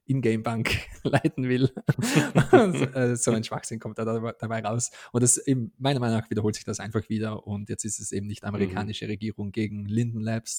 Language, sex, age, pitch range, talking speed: German, male, 20-39, 105-125 Hz, 185 wpm